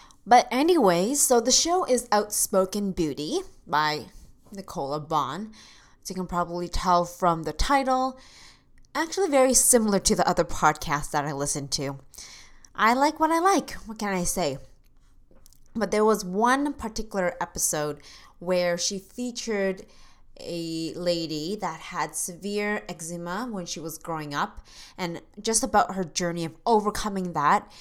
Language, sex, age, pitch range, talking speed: English, female, 20-39, 160-210 Hz, 145 wpm